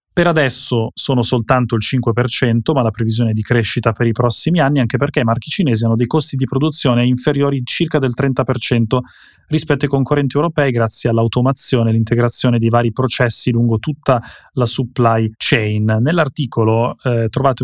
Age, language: 20-39, Italian